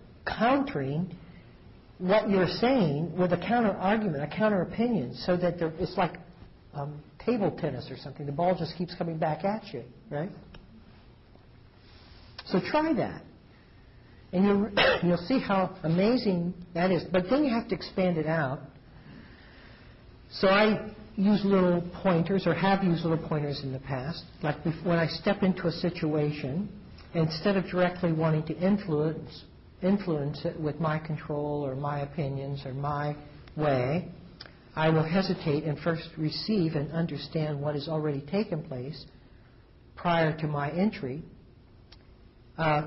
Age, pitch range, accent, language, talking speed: 60-79, 145-185 Hz, American, English, 145 wpm